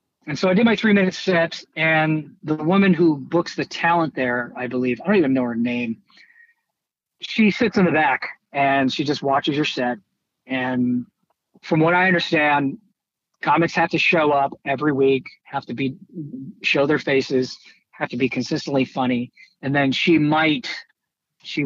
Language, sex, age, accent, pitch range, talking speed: English, male, 40-59, American, 130-165 Hz, 170 wpm